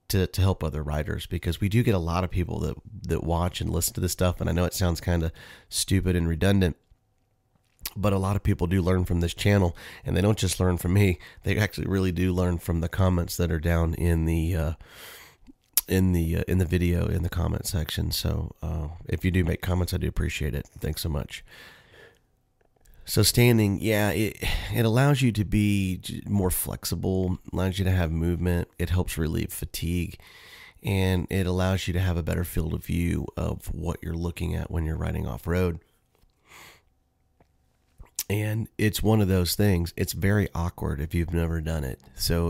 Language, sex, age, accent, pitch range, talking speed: English, male, 30-49, American, 85-95 Hz, 200 wpm